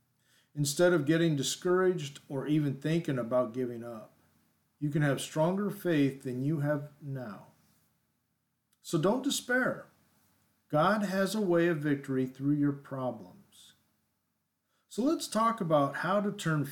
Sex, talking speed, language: male, 135 wpm, English